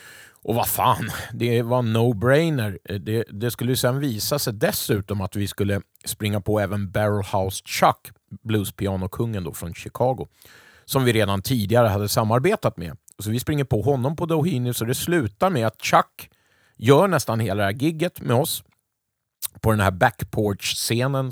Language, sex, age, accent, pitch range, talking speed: Swedish, male, 30-49, native, 100-125 Hz, 165 wpm